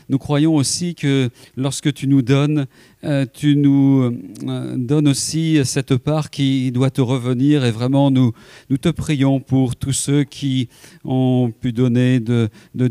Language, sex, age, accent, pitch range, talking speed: French, male, 40-59, French, 125-145 Hz, 155 wpm